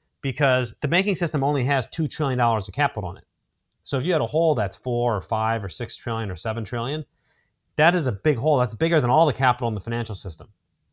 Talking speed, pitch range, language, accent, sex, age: 235 wpm, 110-140 Hz, English, American, male, 30-49